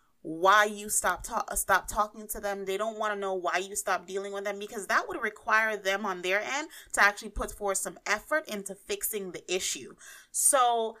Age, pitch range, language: 30-49, 190-250 Hz, English